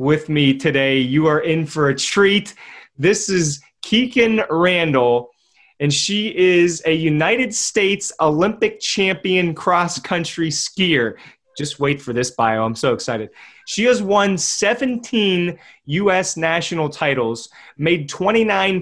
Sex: male